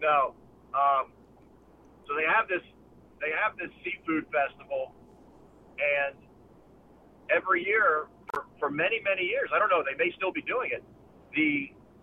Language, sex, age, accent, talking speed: English, male, 50-69, American, 145 wpm